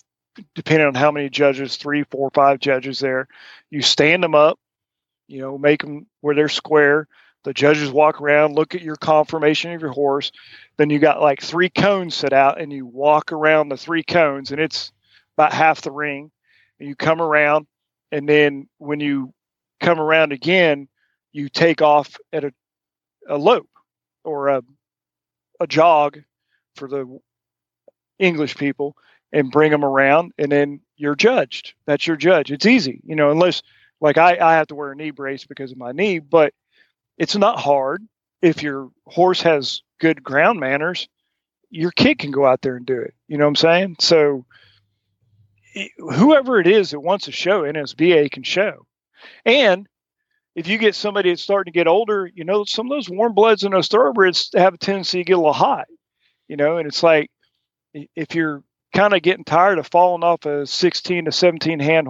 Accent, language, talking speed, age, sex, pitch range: American, English, 185 wpm, 40-59, male, 140-175 Hz